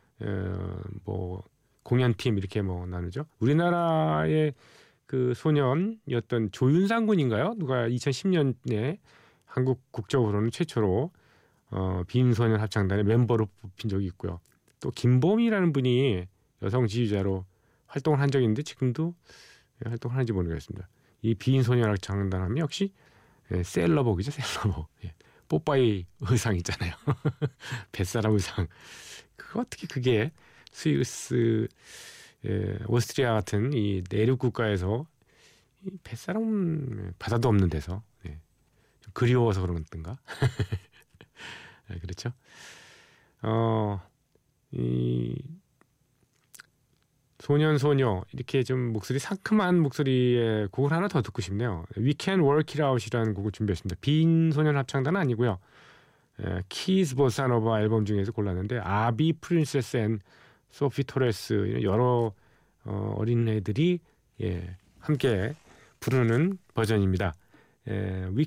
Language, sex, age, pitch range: Korean, male, 40-59, 105-140 Hz